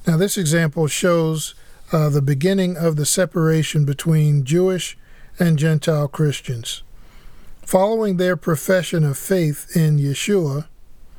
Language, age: English, 50-69